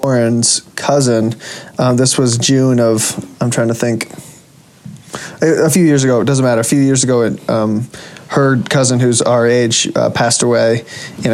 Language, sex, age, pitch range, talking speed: English, male, 20-39, 120-145 Hz, 170 wpm